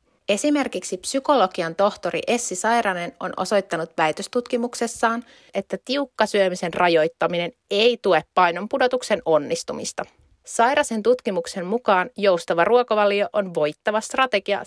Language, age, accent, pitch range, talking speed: Finnish, 30-49, native, 185-230 Hz, 100 wpm